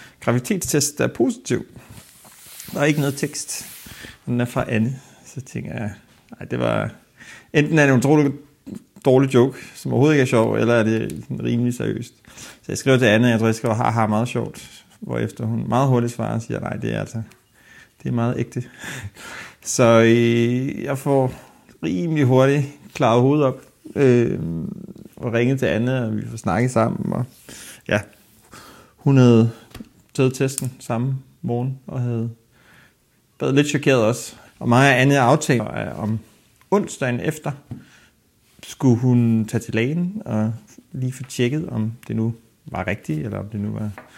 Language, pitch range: English, 115-135 Hz